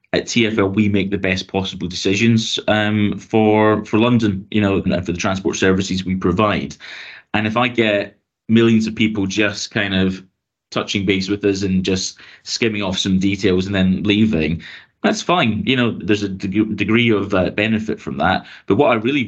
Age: 20-39